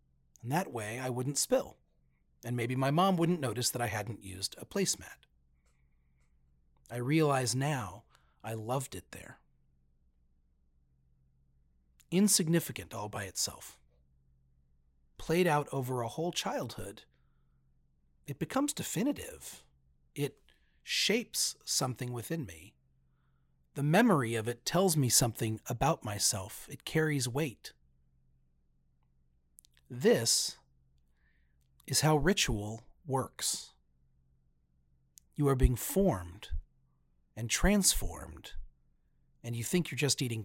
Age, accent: 40-59, American